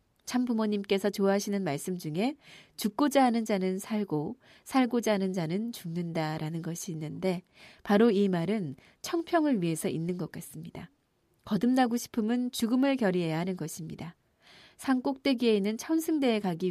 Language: Korean